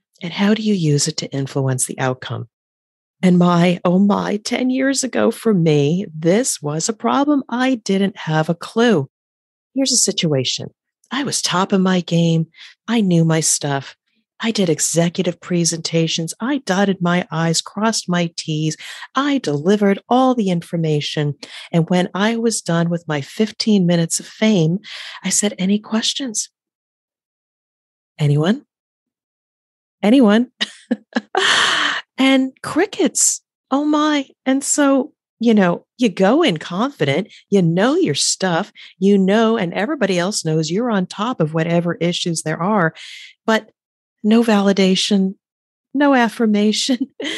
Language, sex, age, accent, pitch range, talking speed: English, female, 40-59, American, 170-245 Hz, 140 wpm